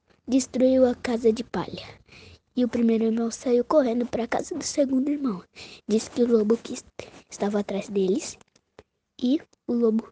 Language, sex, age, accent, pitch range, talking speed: Portuguese, female, 10-29, Brazilian, 225-270 Hz, 165 wpm